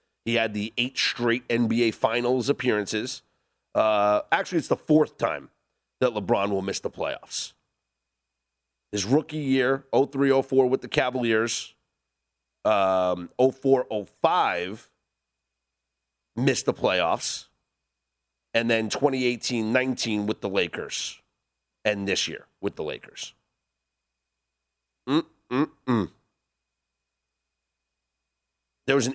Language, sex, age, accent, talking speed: English, male, 30-49, American, 110 wpm